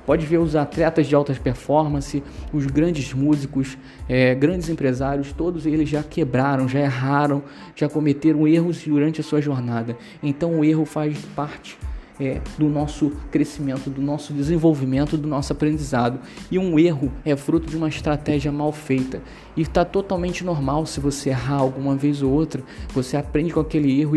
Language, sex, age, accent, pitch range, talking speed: Portuguese, male, 20-39, Brazilian, 135-155 Hz, 160 wpm